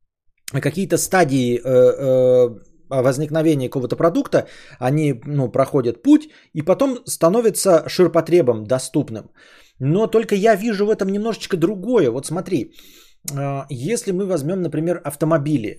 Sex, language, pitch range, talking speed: male, Bulgarian, 130-180 Hz, 110 wpm